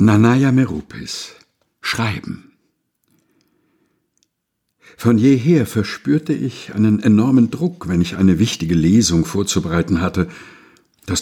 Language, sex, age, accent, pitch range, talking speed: German, male, 60-79, German, 95-120 Hz, 95 wpm